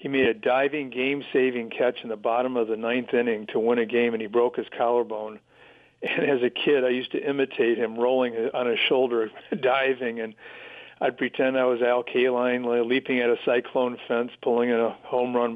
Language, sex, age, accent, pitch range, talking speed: English, male, 50-69, American, 120-140 Hz, 200 wpm